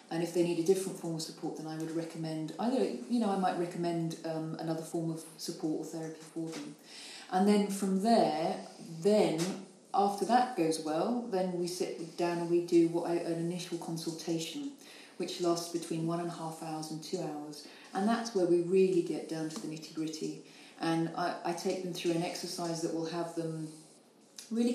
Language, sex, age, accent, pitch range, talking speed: English, female, 40-59, British, 165-190 Hz, 200 wpm